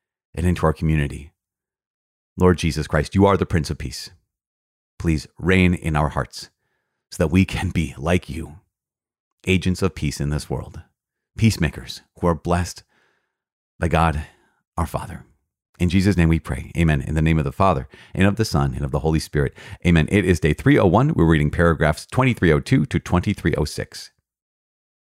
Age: 40-59